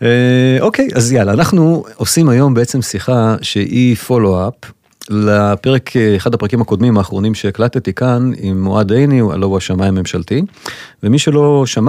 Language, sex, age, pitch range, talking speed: Hebrew, male, 40-59, 100-140 Hz, 145 wpm